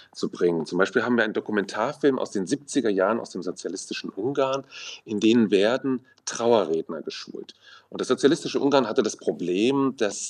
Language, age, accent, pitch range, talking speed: German, 40-59, German, 100-125 Hz, 155 wpm